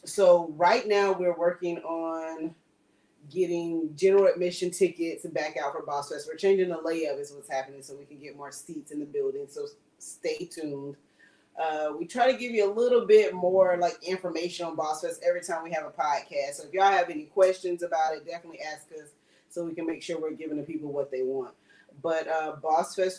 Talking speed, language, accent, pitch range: 210 wpm, English, American, 145-180 Hz